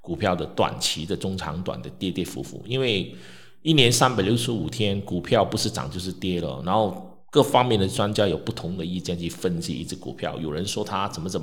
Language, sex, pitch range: Chinese, male, 95-125 Hz